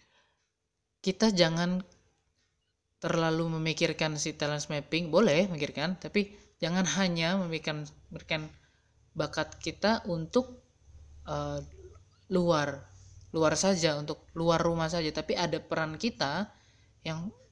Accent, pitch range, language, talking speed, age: native, 135-170 Hz, Indonesian, 105 wpm, 20-39